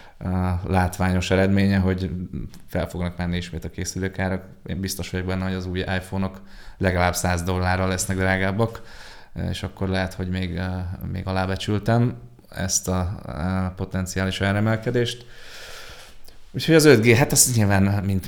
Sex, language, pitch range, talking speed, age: male, Hungarian, 90-100 Hz, 130 wpm, 20-39